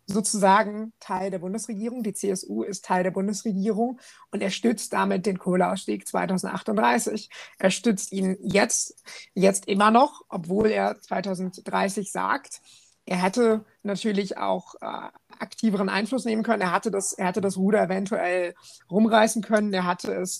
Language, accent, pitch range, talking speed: German, German, 185-215 Hz, 145 wpm